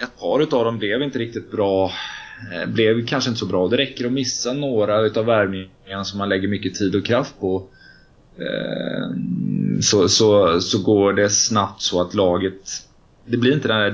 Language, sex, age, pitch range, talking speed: Swedish, male, 20-39, 95-110 Hz, 180 wpm